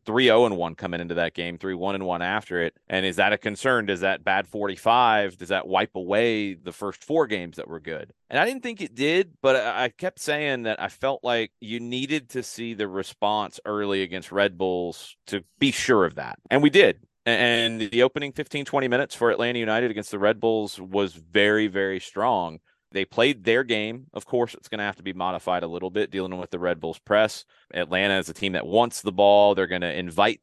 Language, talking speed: English, 230 wpm